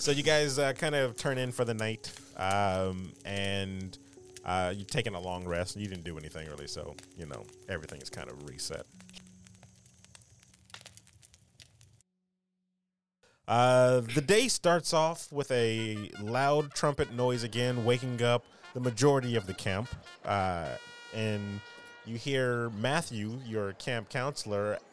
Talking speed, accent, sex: 140 wpm, American, male